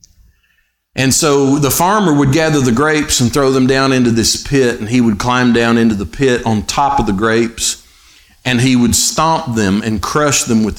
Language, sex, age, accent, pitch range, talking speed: English, male, 50-69, American, 120-155 Hz, 205 wpm